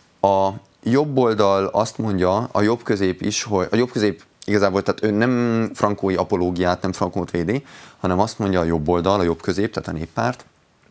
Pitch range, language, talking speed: 85-100 Hz, Hungarian, 175 wpm